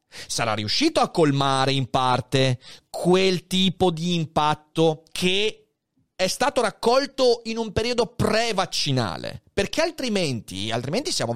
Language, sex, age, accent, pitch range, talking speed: Italian, male, 30-49, native, 135-195 Hz, 115 wpm